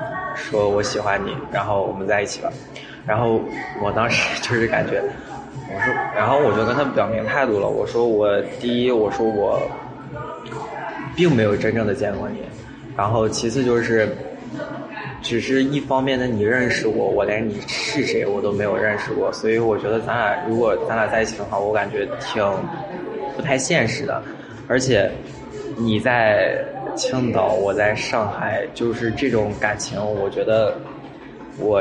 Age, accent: 20-39, native